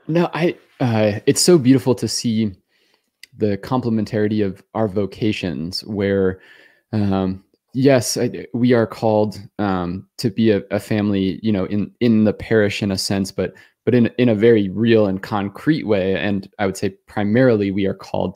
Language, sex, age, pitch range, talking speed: English, male, 20-39, 100-115 Hz, 175 wpm